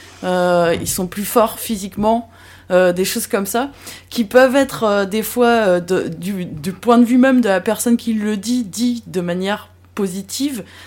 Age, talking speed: 20-39, 180 wpm